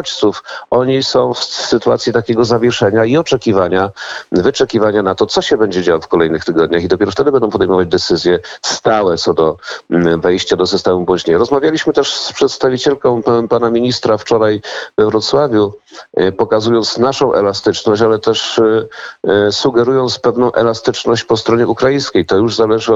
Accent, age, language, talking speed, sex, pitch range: native, 50-69, Polish, 140 wpm, male, 100-120 Hz